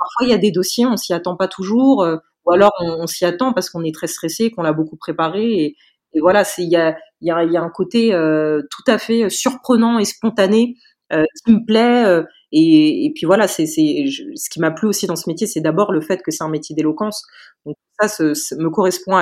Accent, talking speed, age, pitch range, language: French, 245 wpm, 30-49, 160-225 Hz, French